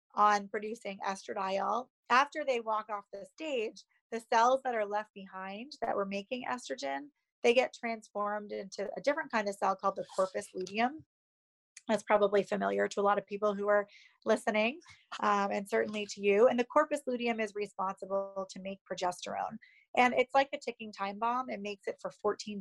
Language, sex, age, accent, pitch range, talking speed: English, female, 30-49, American, 200-240 Hz, 185 wpm